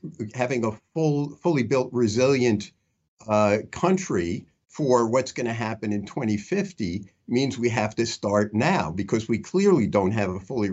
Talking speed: 155 wpm